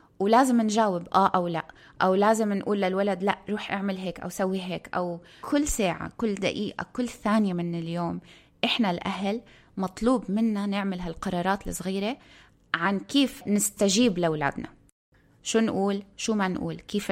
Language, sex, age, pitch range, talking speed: Arabic, female, 20-39, 175-215 Hz, 145 wpm